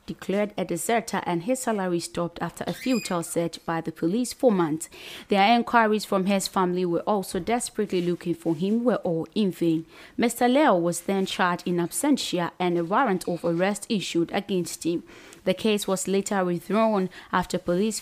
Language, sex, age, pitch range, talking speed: English, female, 20-39, 175-215 Hz, 175 wpm